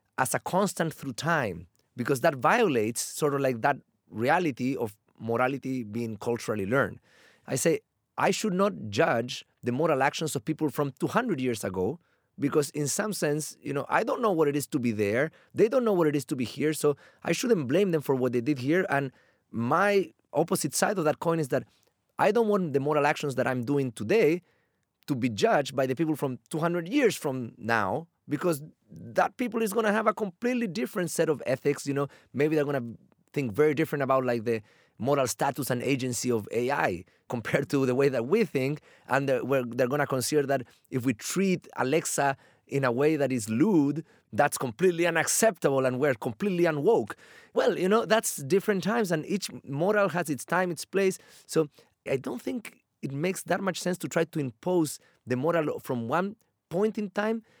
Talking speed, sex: 200 wpm, male